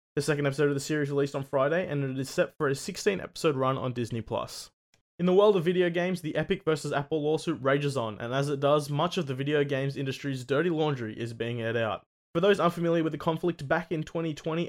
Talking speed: 235 wpm